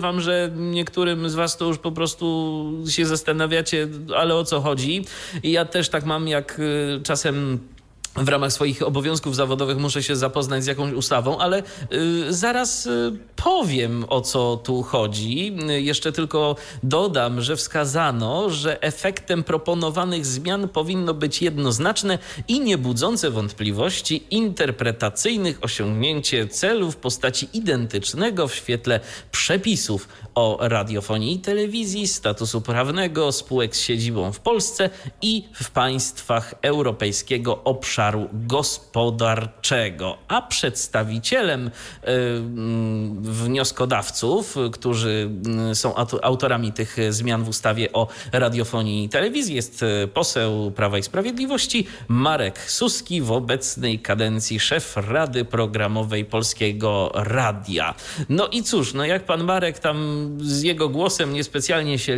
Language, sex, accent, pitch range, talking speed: Polish, male, native, 115-165 Hz, 125 wpm